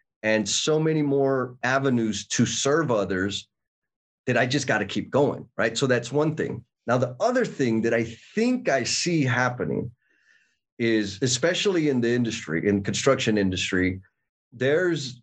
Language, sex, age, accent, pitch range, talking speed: English, male, 30-49, American, 105-135 Hz, 155 wpm